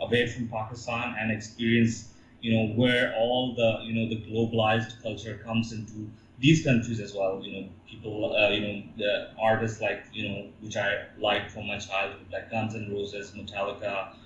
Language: English